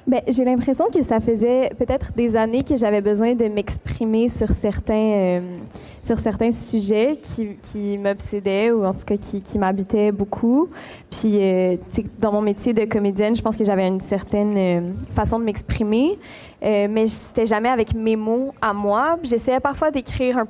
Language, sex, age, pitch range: French, female, 20-39, 200-230 Hz